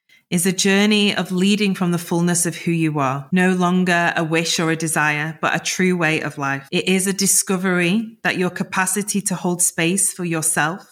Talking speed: 205 wpm